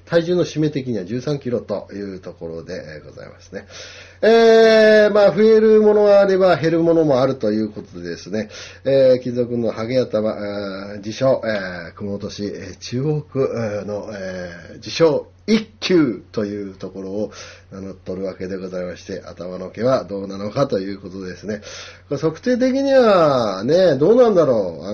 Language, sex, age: Japanese, male, 40-59